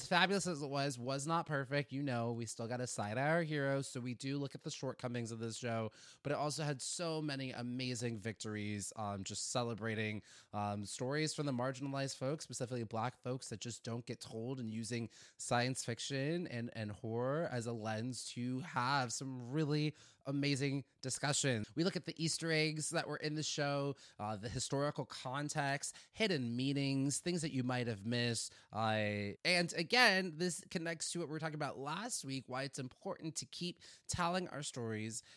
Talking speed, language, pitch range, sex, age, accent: 190 wpm, English, 115-150 Hz, male, 20-39, American